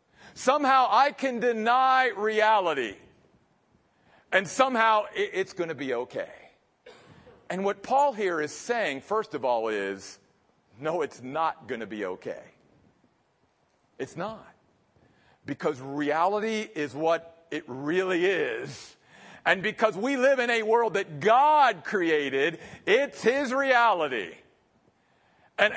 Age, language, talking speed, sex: 50-69, English, 120 wpm, male